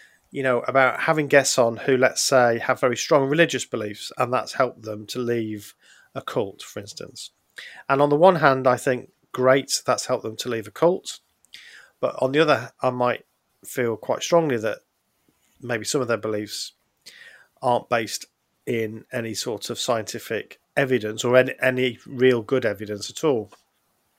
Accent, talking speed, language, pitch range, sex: British, 175 wpm, English, 115-140 Hz, male